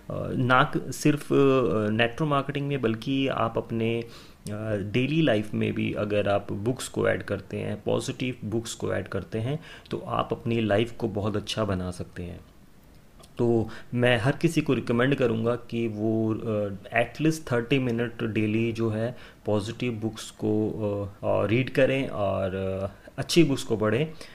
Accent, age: native, 30-49